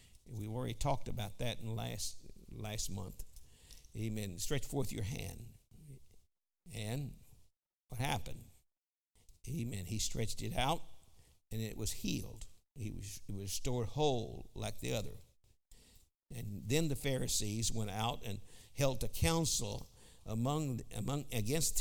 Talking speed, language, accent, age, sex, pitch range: 135 wpm, English, American, 60-79, male, 100-125 Hz